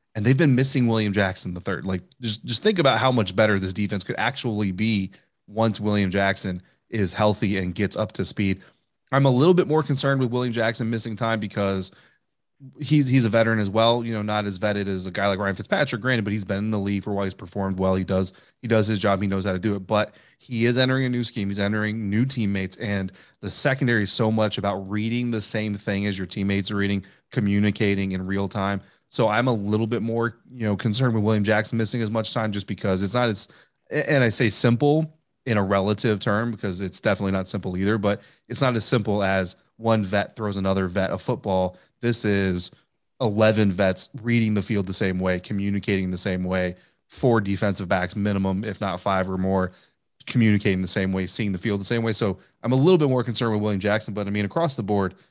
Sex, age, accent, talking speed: male, 30-49, American, 230 wpm